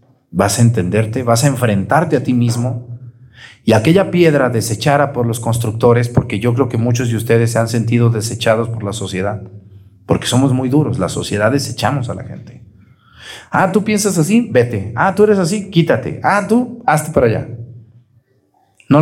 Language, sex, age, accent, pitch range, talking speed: Spanish, male, 40-59, Mexican, 115-150 Hz, 175 wpm